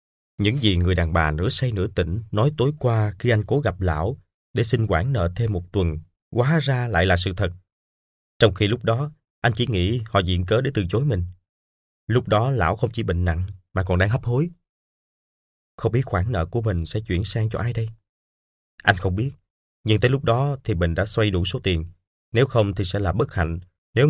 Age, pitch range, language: 20-39, 90-120 Hz, Vietnamese